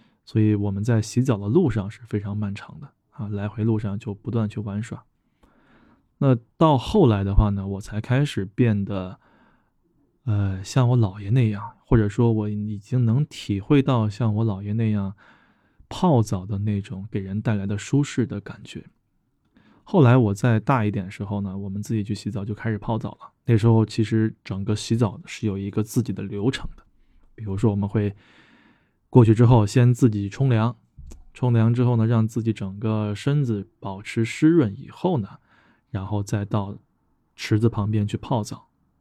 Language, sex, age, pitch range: Chinese, male, 20-39, 100-120 Hz